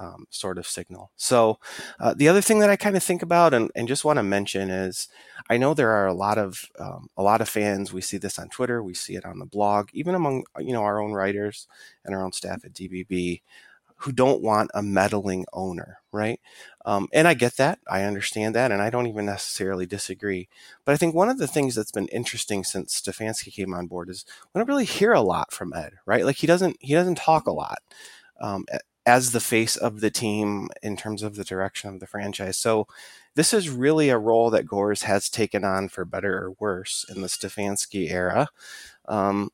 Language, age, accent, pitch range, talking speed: English, 30-49, American, 100-140 Hz, 225 wpm